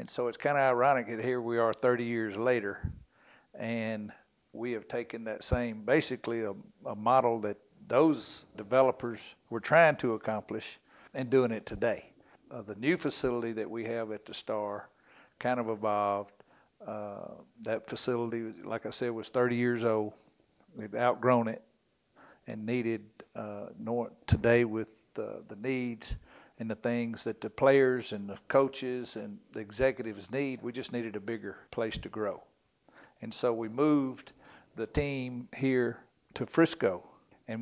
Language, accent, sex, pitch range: English, American, male, 110-125 Hz